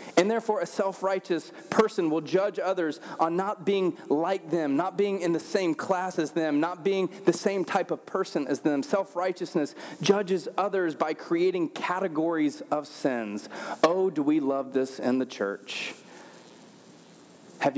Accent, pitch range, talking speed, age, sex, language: American, 145-195 Hz, 160 wpm, 30-49, male, English